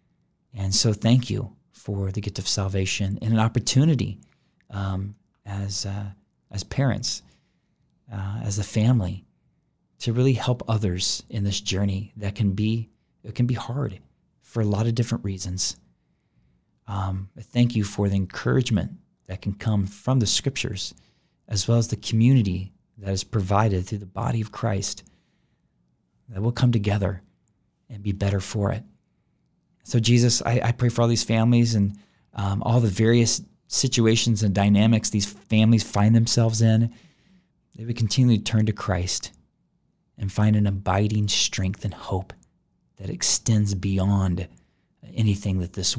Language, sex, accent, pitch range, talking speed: English, male, American, 95-115 Hz, 155 wpm